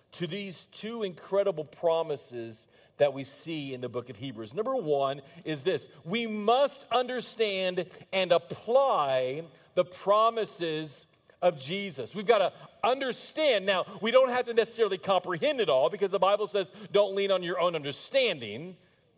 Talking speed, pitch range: 155 wpm, 160-230 Hz